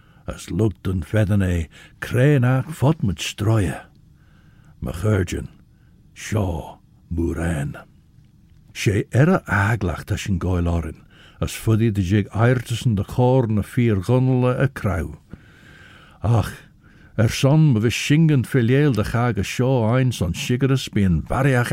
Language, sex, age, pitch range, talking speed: English, male, 60-79, 95-135 Hz, 135 wpm